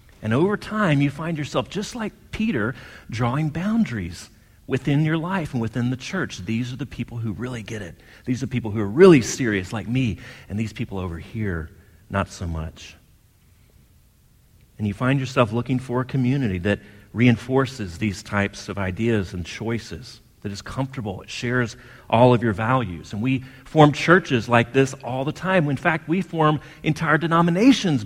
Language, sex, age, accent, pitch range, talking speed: English, male, 40-59, American, 100-135 Hz, 180 wpm